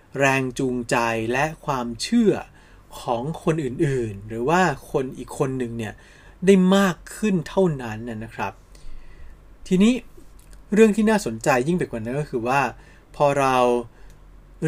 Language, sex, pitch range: Thai, male, 120-170 Hz